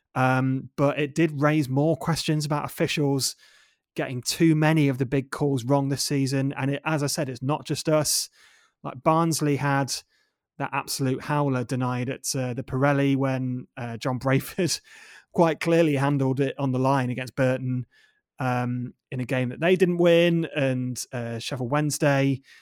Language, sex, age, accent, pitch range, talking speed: English, male, 30-49, British, 130-155 Hz, 170 wpm